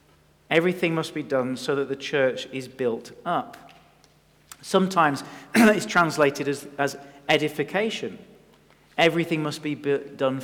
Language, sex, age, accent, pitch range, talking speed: English, male, 40-59, British, 135-175 Hz, 120 wpm